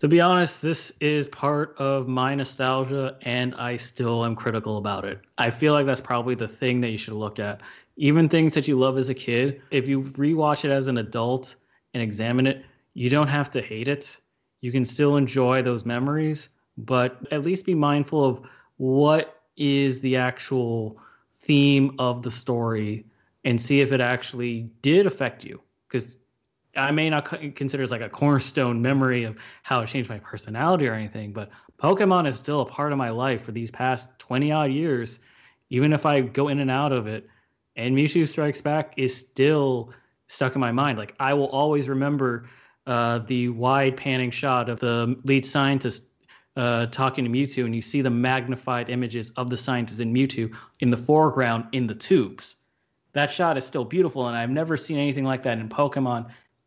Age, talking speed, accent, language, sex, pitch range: 20-39, 190 wpm, American, English, male, 120-140 Hz